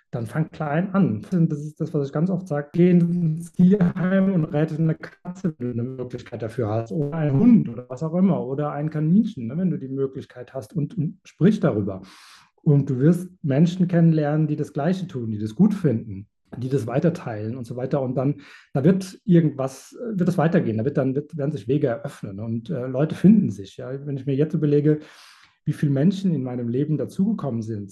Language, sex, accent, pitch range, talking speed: German, male, German, 125-165 Hz, 210 wpm